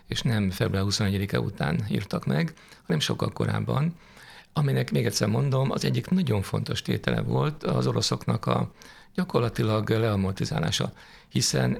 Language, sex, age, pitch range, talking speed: Hungarian, male, 50-69, 100-130 Hz, 130 wpm